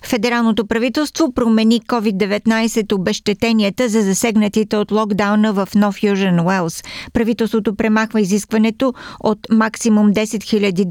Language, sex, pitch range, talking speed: Bulgarian, female, 200-230 Hz, 105 wpm